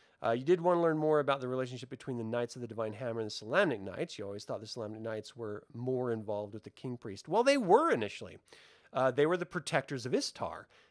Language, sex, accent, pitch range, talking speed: English, male, American, 125-205 Hz, 240 wpm